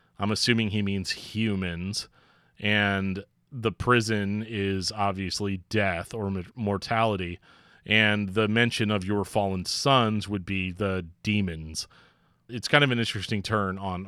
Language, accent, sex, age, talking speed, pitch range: English, American, male, 30-49, 130 wpm, 100-130 Hz